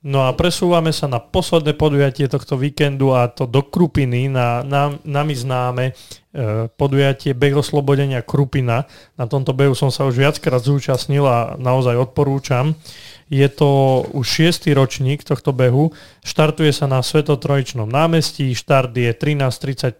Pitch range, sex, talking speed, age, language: 125-145 Hz, male, 145 wpm, 30-49, Slovak